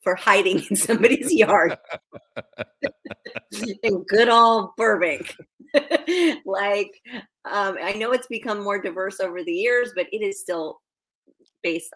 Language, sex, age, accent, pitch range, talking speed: English, female, 30-49, American, 170-245 Hz, 125 wpm